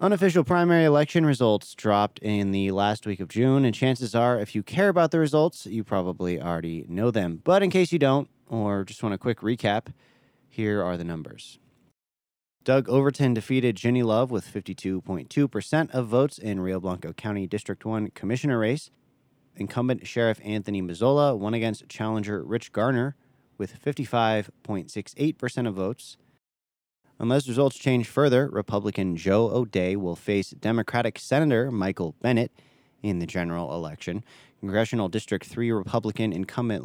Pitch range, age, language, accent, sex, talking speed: 95-130 Hz, 30-49, English, American, male, 150 wpm